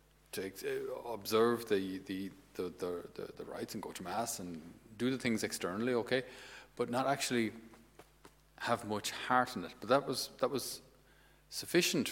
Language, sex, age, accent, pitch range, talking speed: English, male, 40-59, Irish, 100-120 Hz, 165 wpm